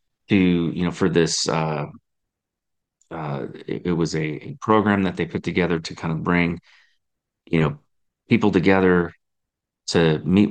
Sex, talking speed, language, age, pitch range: male, 155 wpm, English, 30-49, 85-100 Hz